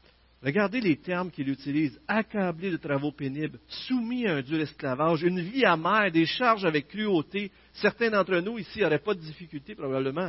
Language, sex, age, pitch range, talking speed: French, male, 50-69, 135-190 Hz, 175 wpm